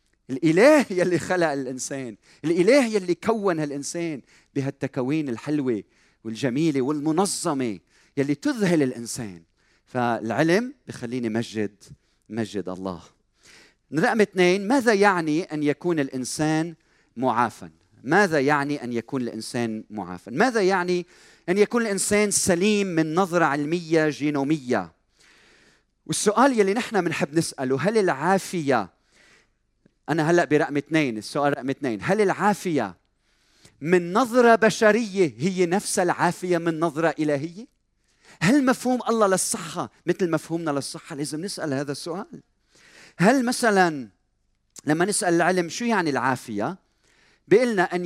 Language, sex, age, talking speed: Arabic, male, 40-59, 110 wpm